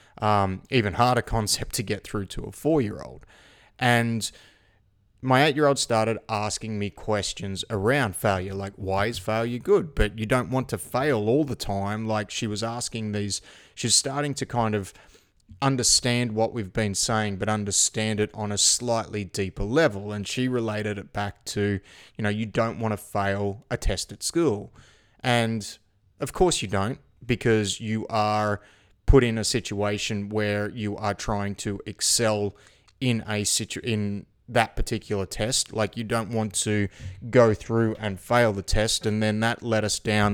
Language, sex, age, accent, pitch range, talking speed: English, male, 30-49, Australian, 100-115 Hz, 170 wpm